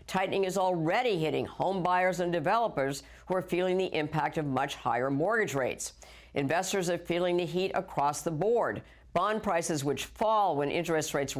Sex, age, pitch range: female, 50-69, 145-190 Hz